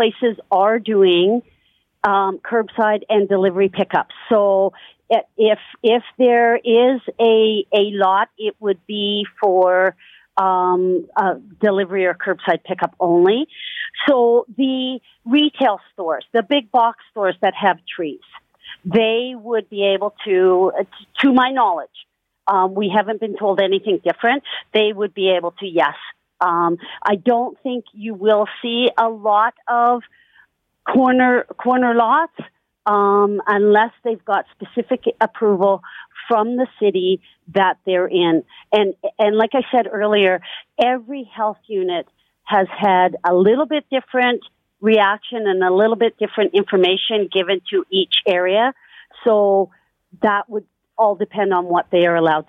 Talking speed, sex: 140 wpm, female